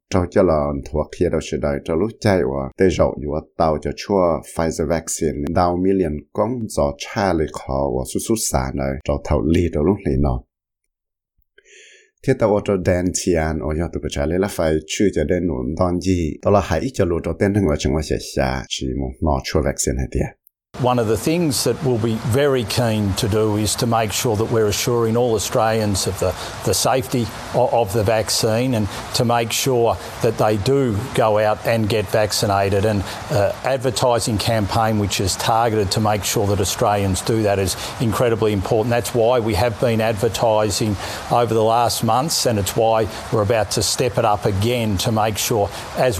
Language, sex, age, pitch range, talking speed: English, male, 60-79, 90-115 Hz, 110 wpm